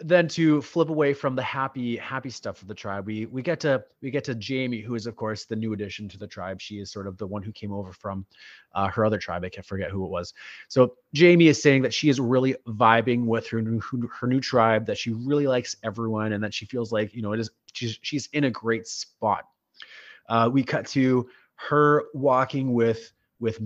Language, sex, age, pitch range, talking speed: English, male, 30-49, 110-135 Hz, 235 wpm